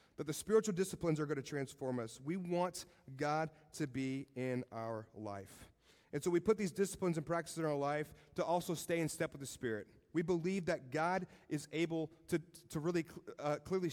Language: English